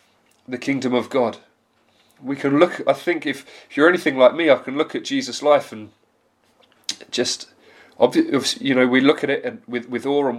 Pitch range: 130-170 Hz